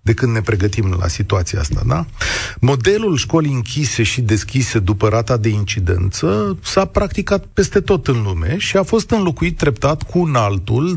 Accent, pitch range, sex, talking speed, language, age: native, 110-165 Hz, male, 170 wpm, Romanian, 30-49